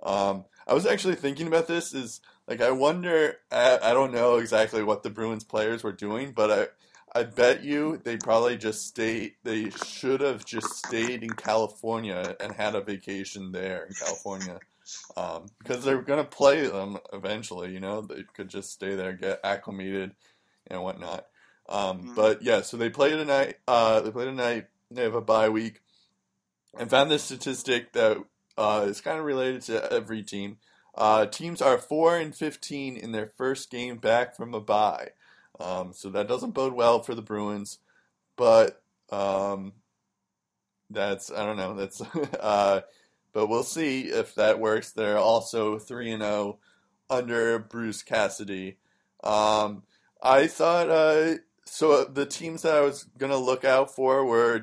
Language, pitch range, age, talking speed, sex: English, 105-135 Hz, 20-39, 170 wpm, male